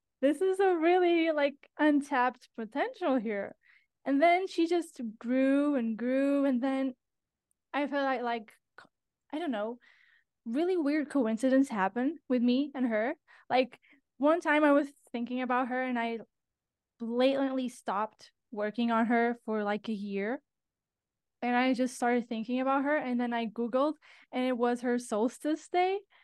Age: 10-29